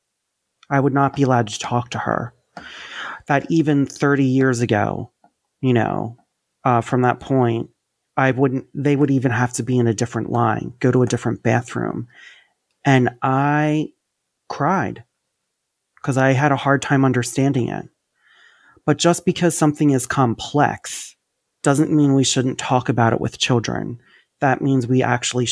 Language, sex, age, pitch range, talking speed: English, male, 30-49, 120-140 Hz, 160 wpm